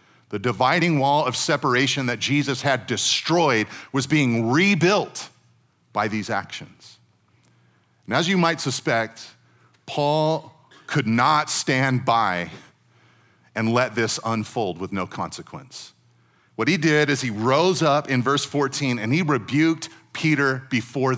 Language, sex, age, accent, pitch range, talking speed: English, male, 40-59, American, 120-170 Hz, 135 wpm